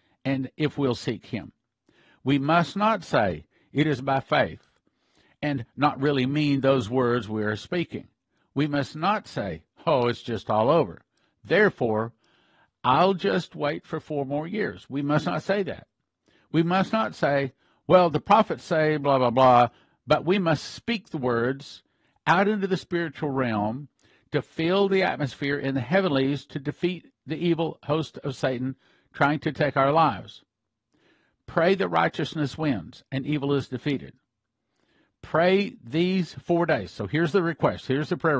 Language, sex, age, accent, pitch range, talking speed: English, male, 50-69, American, 125-160 Hz, 165 wpm